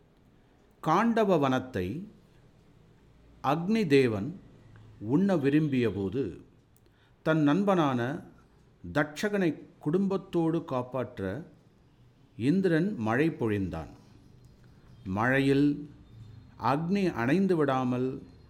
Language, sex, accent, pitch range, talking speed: Tamil, male, native, 115-155 Hz, 55 wpm